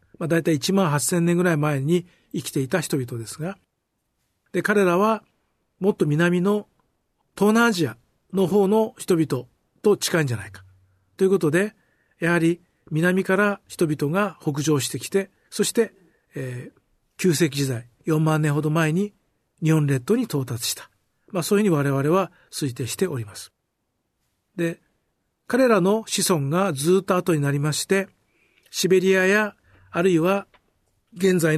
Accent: native